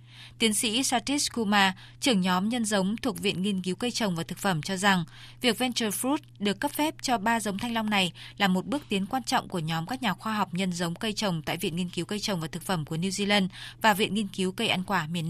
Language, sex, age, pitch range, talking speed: Vietnamese, female, 20-39, 185-230 Hz, 265 wpm